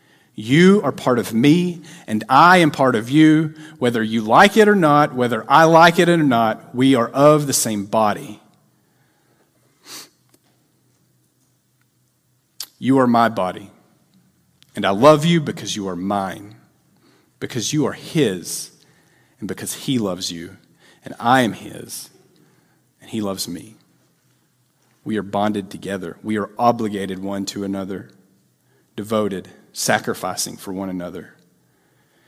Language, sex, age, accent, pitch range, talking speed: English, male, 40-59, American, 105-145 Hz, 135 wpm